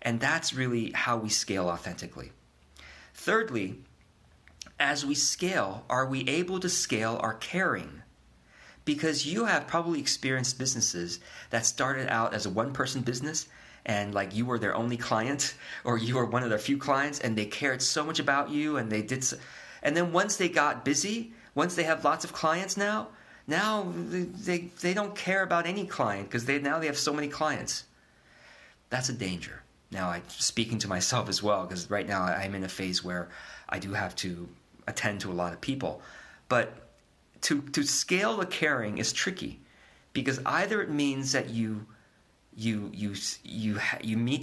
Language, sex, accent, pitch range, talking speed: English, male, American, 105-145 Hz, 185 wpm